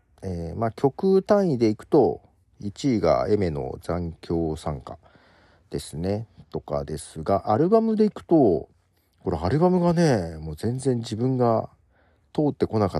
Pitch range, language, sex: 85-130 Hz, Japanese, male